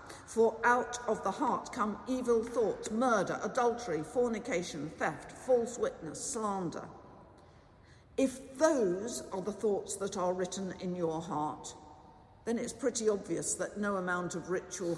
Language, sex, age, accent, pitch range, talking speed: English, female, 50-69, British, 170-235 Hz, 140 wpm